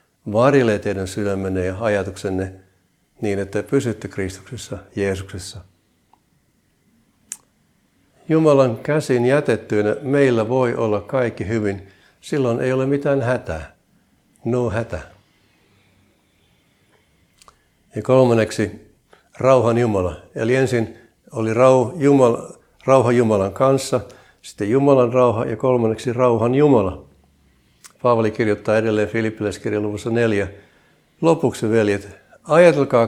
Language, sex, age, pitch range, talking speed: Finnish, male, 60-79, 100-125 Hz, 95 wpm